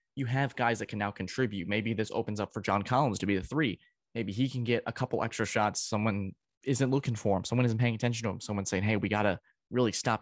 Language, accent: English, American